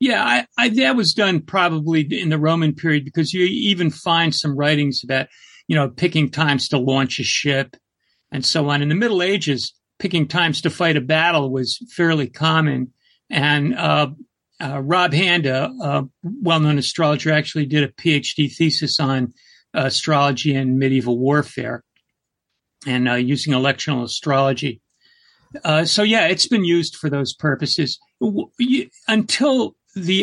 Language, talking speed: English, 155 wpm